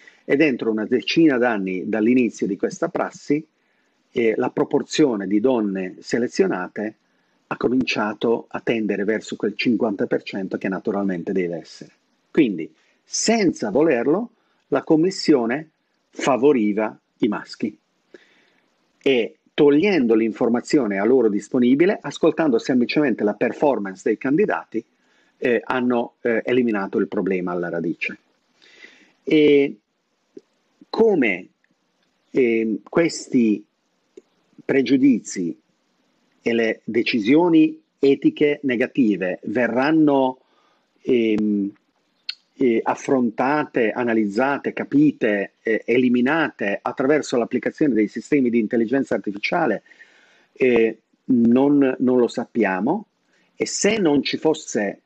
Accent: native